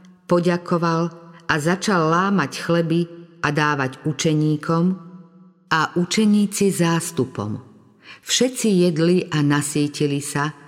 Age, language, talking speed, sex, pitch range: 50-69, Slovak, 90 wpm, female, 150-185 Hz